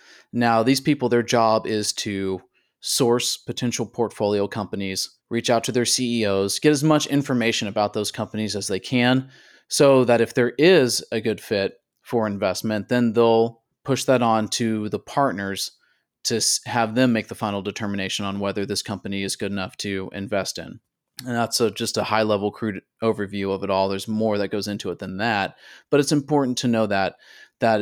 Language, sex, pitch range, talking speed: English, male, 100-120 Hz, 185 wpm